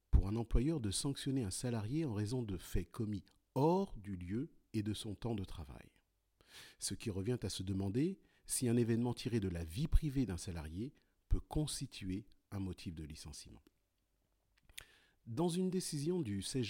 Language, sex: French, male